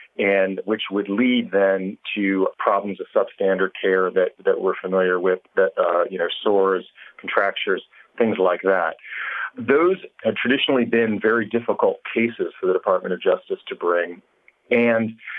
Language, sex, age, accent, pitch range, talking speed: English, male, 40-59, American, 105-160 Hz, 150 wpm